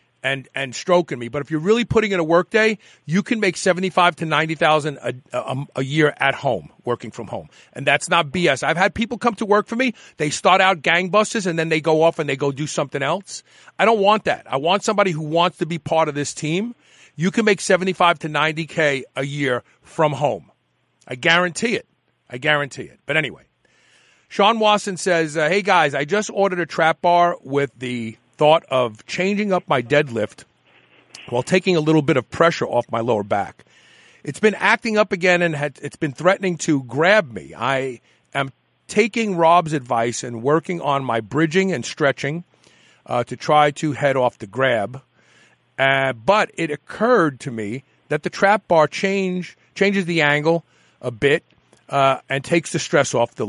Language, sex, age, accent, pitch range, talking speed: English, male, 40-59, American, 135-185 Hz, 195 wpm